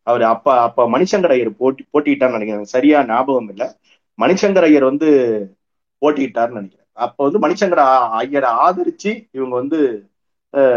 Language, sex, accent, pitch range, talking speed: Tamil, male, native, 115-165 Hz, 135 wpm